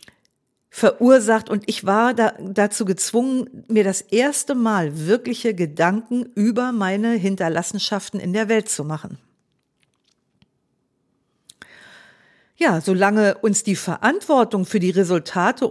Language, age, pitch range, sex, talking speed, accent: German, 50-69, 180-240 Hz, female, 110 wpm, German